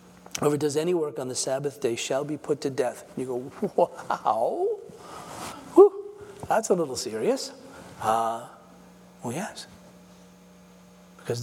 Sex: male